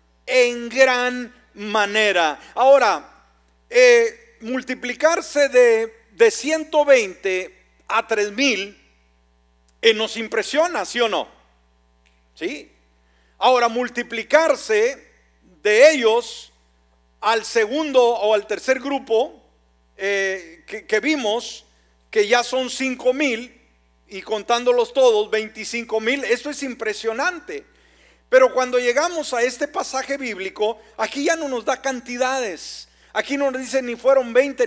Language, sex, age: Spanish, male, 40-59